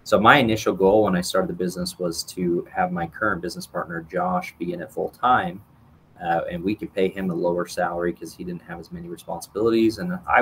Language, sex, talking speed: English, male, 230 wpm